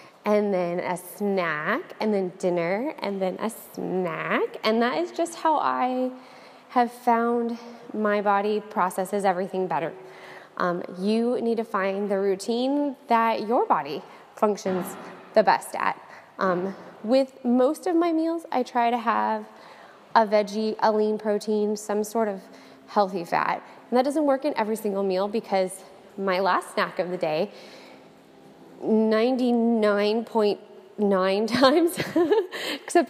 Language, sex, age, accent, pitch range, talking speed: English, female, 20-39, American, 185-245 Hz, 140 wpm